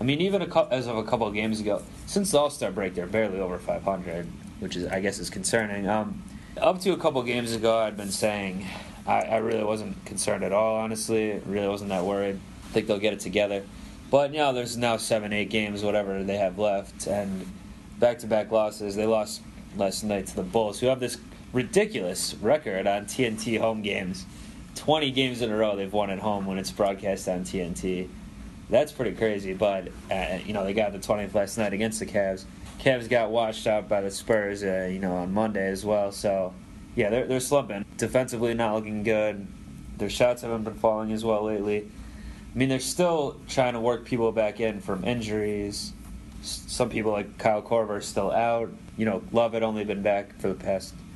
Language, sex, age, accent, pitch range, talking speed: English, male, 20-39, American, 100-115 Hz, 210 wpm